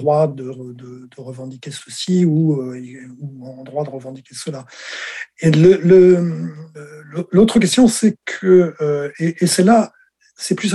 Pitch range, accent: 140-180 Hz, French